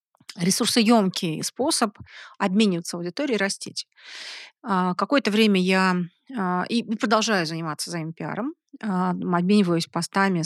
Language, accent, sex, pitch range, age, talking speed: Russian, native, female, 180-220 Hz, 30-49, 80 wpm